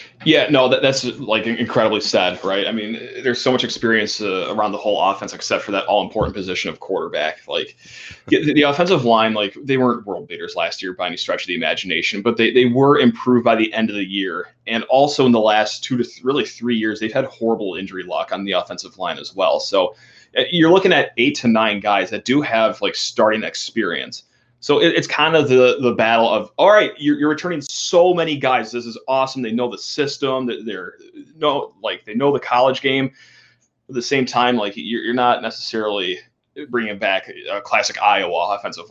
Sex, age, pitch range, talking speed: male, 30-49, 115-140 Hz, 215 wpm